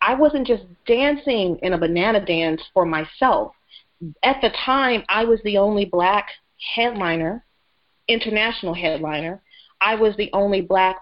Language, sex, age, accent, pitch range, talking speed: English, female, 30-49, American, 180-230 Hz, 140 wpm